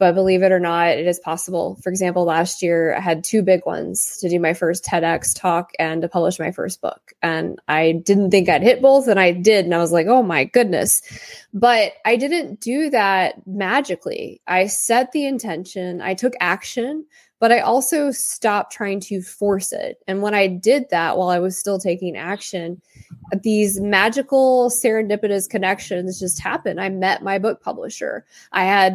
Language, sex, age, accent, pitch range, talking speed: English, female, 20-39, American, 180-225 Hz, 190 wpm